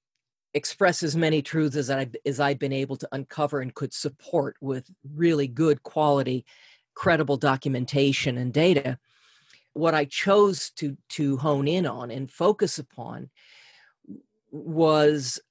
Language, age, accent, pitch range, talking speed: English, 40-59, American, 135-160 Hz, 130 wpm